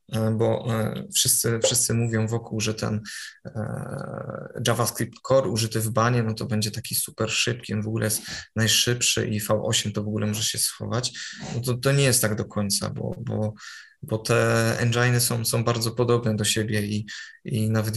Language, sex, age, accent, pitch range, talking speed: Polish, male, 20-39, native, 110-120 Hz, 175 wpm